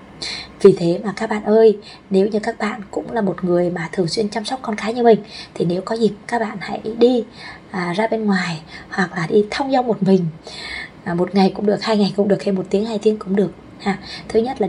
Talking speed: 240 wpm